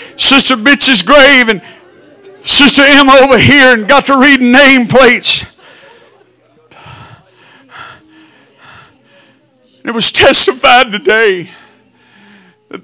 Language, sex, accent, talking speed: English, male, American, 90 wpm